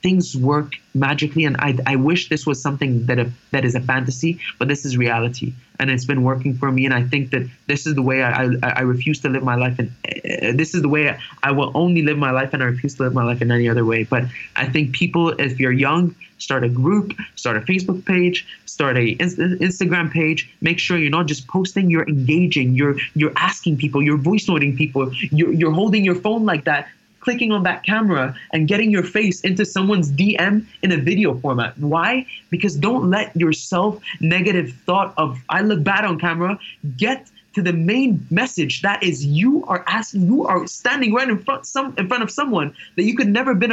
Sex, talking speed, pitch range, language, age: male, 220 wpm, 135-190 Hz, English, 20-39